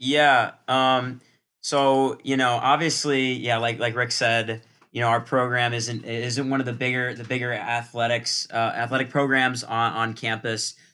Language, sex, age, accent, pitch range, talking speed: English, male, 20-39, American, 110-125 Hz, 165 wpm